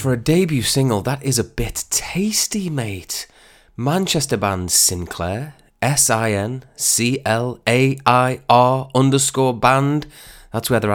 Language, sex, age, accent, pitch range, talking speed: English, male, 20-39, British, 95-125 Hz, 105 wpm